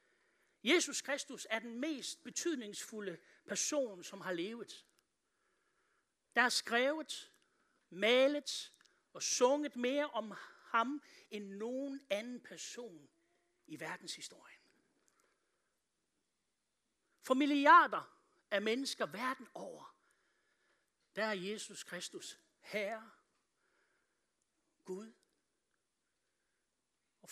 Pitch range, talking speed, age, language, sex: 215-290 Hz, 85 wpm, 60-79, Danish, male